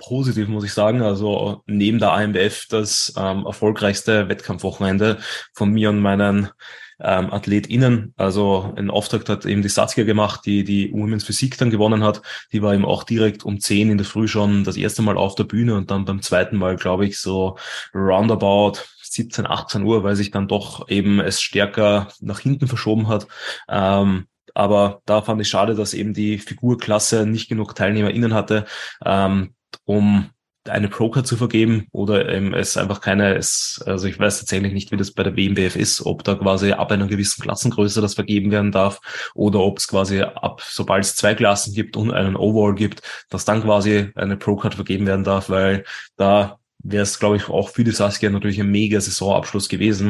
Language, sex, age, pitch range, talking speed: German, male, 20-39, 100-110 Hz, 185 wpm